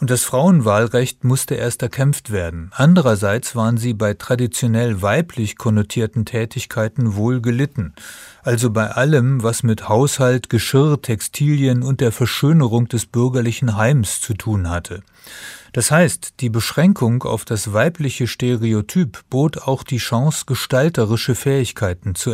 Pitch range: 110-140 Hz